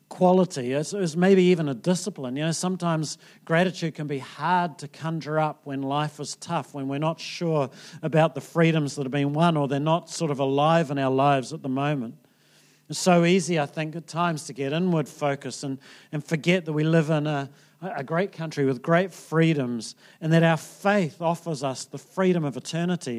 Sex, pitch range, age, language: male, 140-170 Hz, 40-59, English